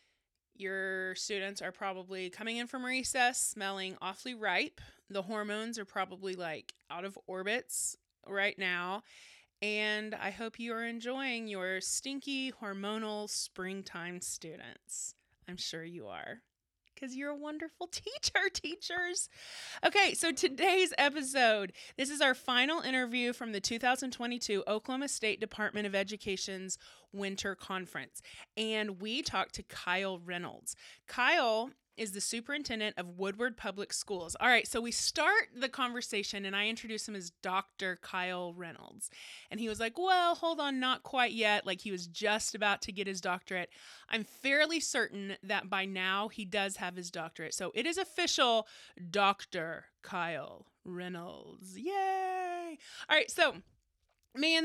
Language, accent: English, American